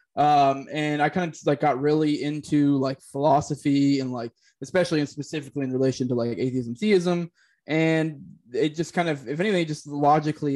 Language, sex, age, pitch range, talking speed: English, male, 20-39, 135-160 Hz, 180 wpm